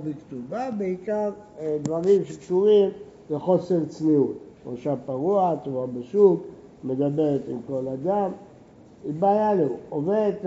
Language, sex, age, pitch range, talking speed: Hebrew, male, 60-79, 150-200 Hz, 105 wpm